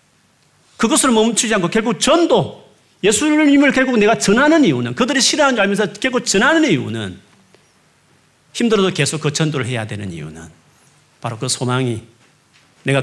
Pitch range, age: 135-200 Hz, 40-59